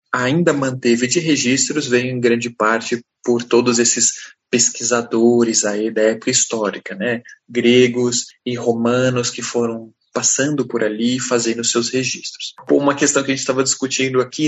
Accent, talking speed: Brazilian, 150 wpm